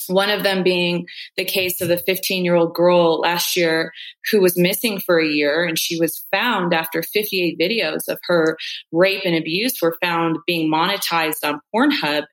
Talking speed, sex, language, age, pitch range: 175 wpm, female, English, 30-49, 160-195 Hz